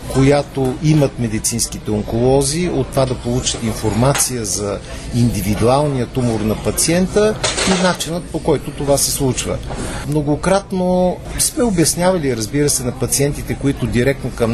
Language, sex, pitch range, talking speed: Bulgarian, male, 125-160 Hz, 130 wpm